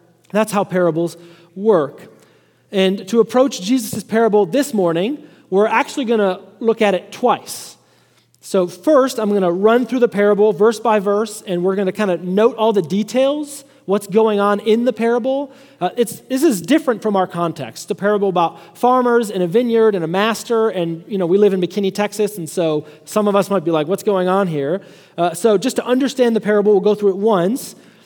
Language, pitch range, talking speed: English, 175-225 Hz, 205 wpm